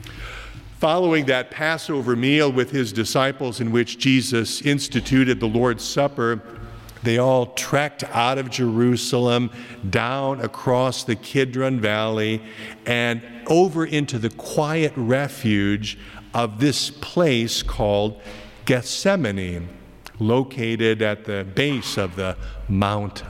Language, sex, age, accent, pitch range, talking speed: English, male, 50-69, American, 105-135 Hz, 110 wpm